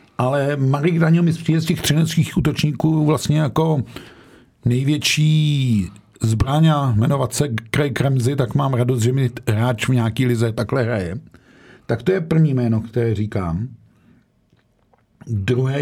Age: 50-69